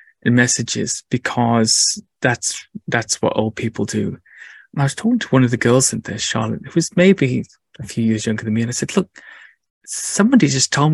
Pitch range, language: 115-140 Hz, English